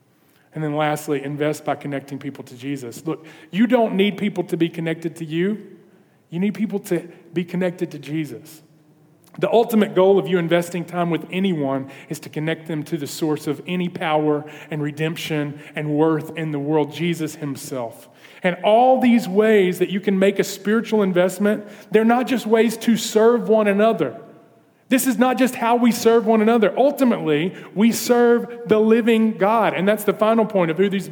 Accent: American